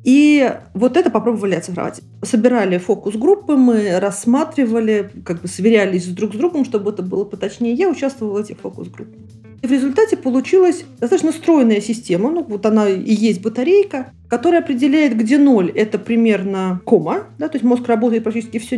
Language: Russian